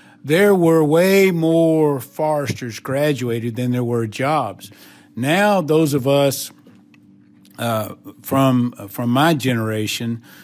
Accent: American